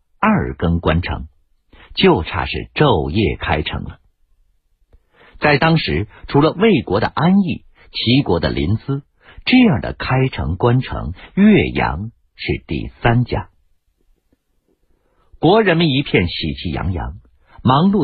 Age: 60-79